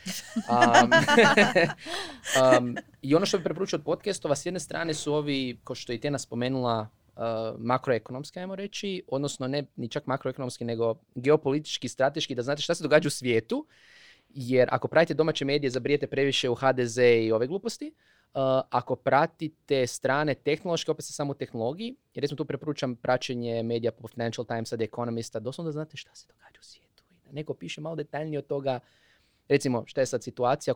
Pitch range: 120-155 Hz